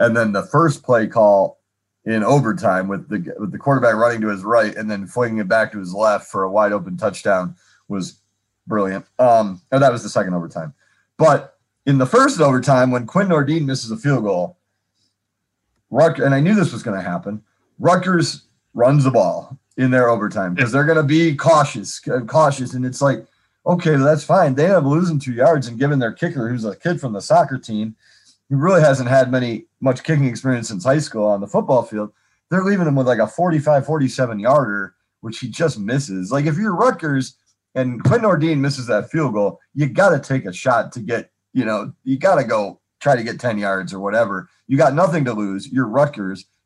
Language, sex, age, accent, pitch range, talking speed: English, male, 30-49, American, 110-150 Hz, 210 wpm